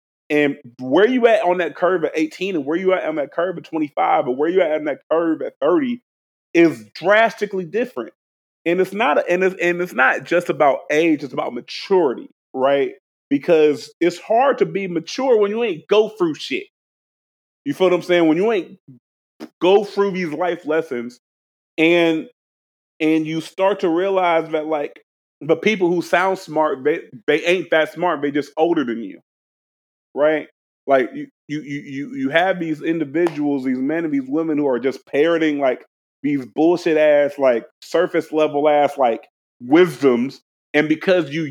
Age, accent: 30-49, American